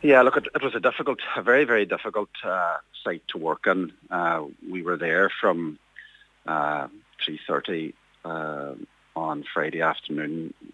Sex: male